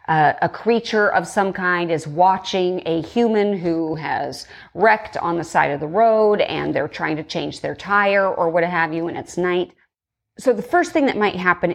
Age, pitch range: 30-49, 185-250 Hz